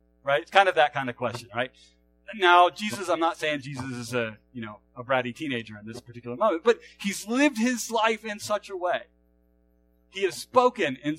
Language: English